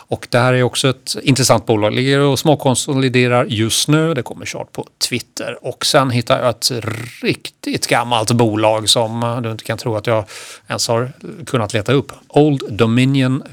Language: Swedish